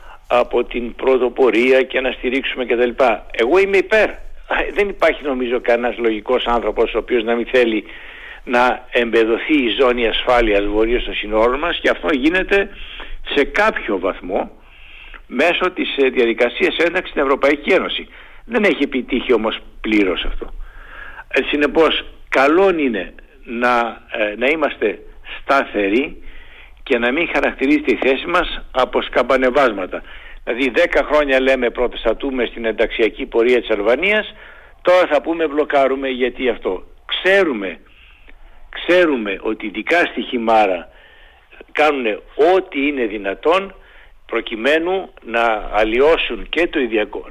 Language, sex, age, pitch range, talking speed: Greek, male, 60-79, 115-185 Hz, 125 wpm